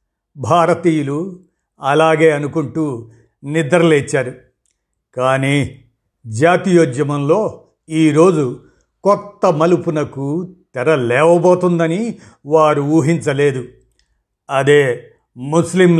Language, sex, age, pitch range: Telugu, male, 50-69, 130-170 Hz